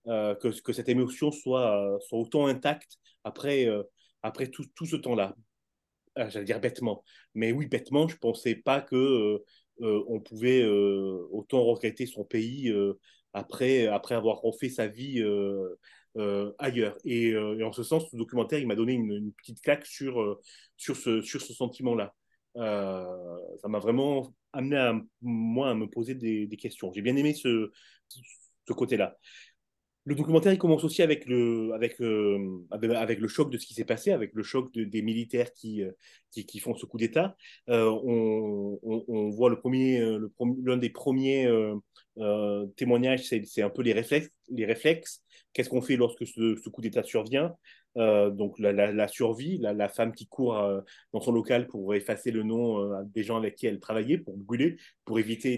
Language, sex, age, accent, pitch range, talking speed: French, male, 30-49, French, 105-130 Hz, 190 wpm